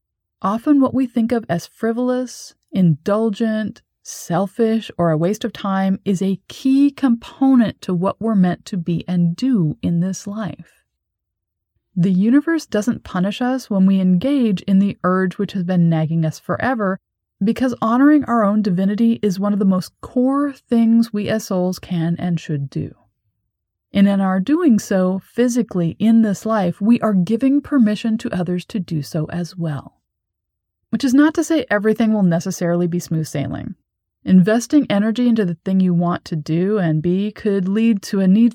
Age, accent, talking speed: 30-49, American, 175 wpm